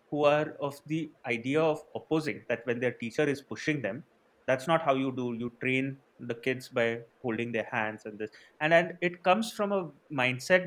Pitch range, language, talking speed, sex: 115-155 Hz, English, 200 wpm, male